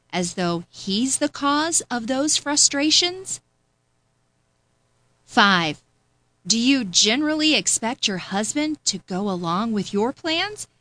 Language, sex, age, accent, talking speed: English, female, 40-59, American, 115 wpm